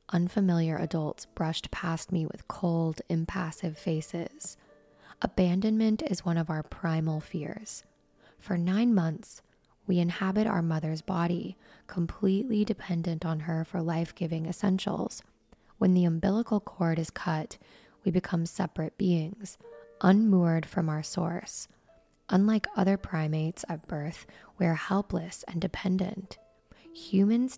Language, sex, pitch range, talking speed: English, female, 165-195 Hz, 120 wpm